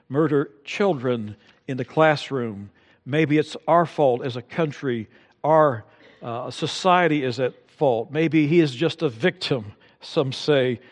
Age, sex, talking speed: 60-79, male, 145 wpm